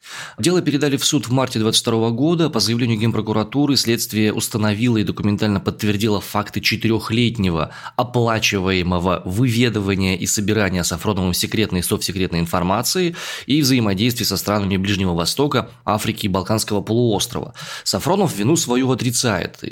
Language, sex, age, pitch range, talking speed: Russian, male, 20-39, 100-125 Hz, 125 wpm